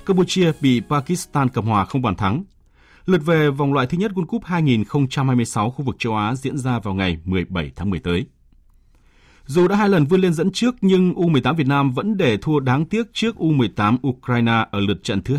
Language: Vietnamese